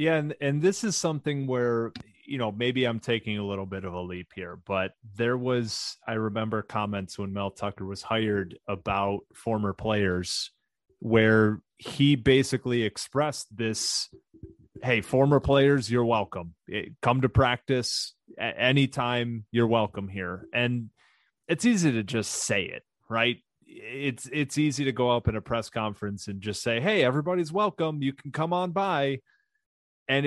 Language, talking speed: English, 160 wpm